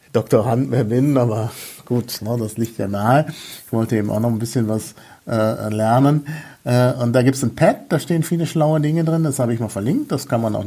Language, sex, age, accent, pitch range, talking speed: German, male, 50-69, German, 115-155 Hz, 235 wpm